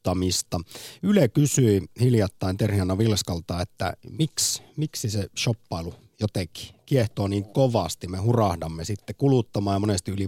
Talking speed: 125 wpm